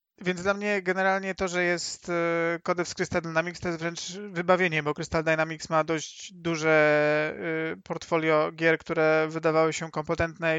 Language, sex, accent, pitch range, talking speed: Polish, male, native, 165-195 Hz, 155 wpm